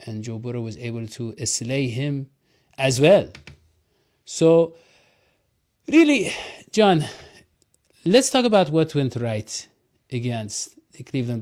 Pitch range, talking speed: 125-165 Hz, 115 wpm